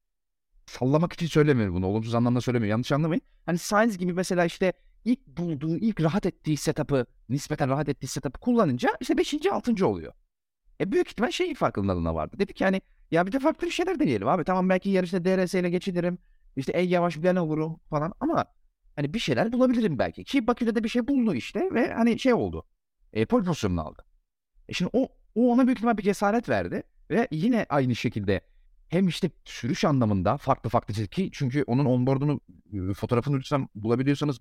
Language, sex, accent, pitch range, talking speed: Turkish, male, native, 120-200 Hz, 185 wpm